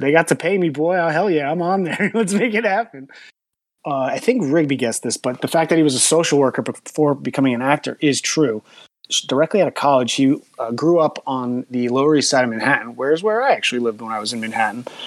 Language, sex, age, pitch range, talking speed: English, male, 30-49, 120-150 Hz, 245 wpm